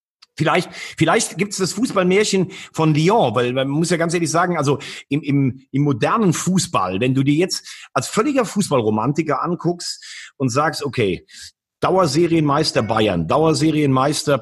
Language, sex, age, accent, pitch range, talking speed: German, male, 40-59, German, 130-170 Hz, 135 wpm